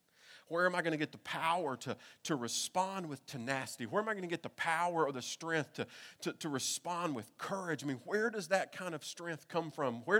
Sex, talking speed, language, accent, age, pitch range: male, 240 wpm, English, American, 40-59, 145-195 Hz